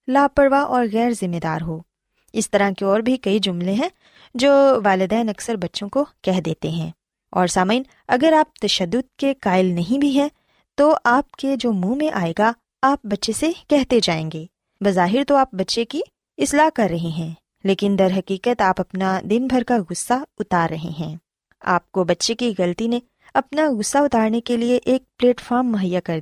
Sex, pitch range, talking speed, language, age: female, 185-265 Hz, 190 wpm, Urdu, 20-39